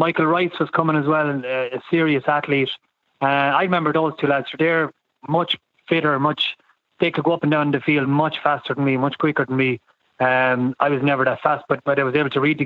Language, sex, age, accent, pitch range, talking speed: English, male, 30-49, Irish, 140-165 Hz, 230 wpm